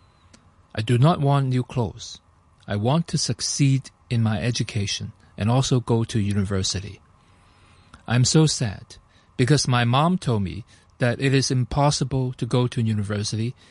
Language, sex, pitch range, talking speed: English, male, 100-130 Hz, 155 wpm